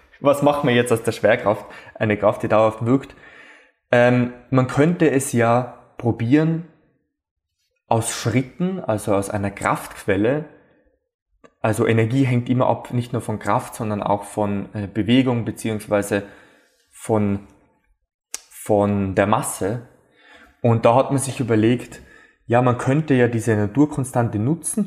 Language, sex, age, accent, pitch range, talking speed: German, male, 20-39, German, 110-135 Hz, 135 wpm